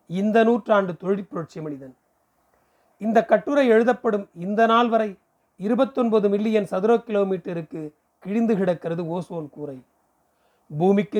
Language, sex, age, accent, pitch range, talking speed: Tamil, male, 40-59, native, 175-220 Hz, 100 wpm